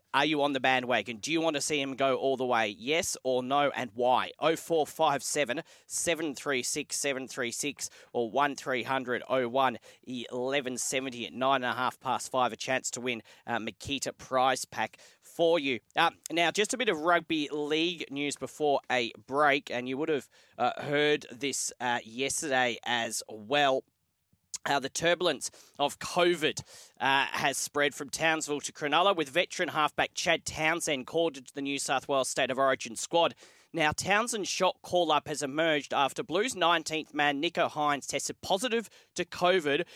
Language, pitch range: English, 130-160 Hz